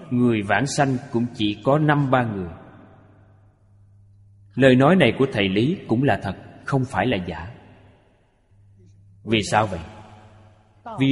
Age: 20-39